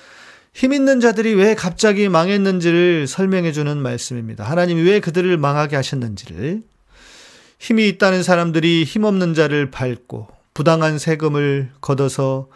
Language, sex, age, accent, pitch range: Korean, male, 40-59, native, 135-180 Hz